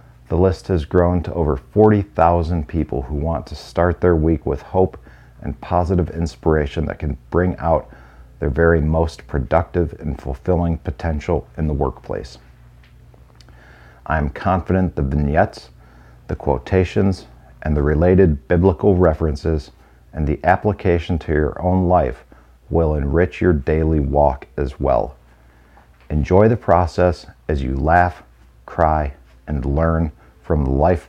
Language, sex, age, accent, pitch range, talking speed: English, male, 50-69, American, 65-90 Hz, 135 wpm